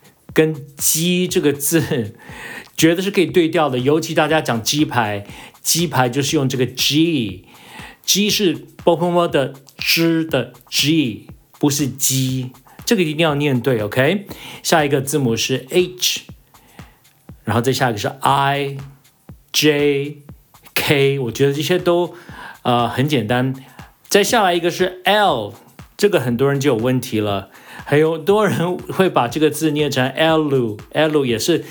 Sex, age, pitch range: male, 50-69, 130-170 Hz